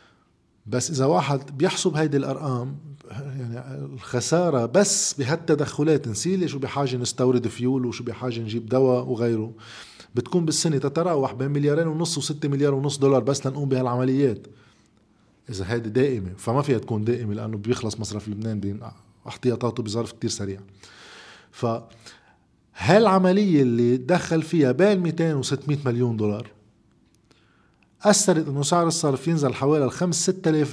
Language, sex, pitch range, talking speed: Arabic, male, 115-155 Hz, 130 wpm